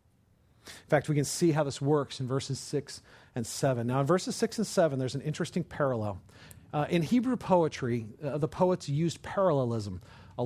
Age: 40-59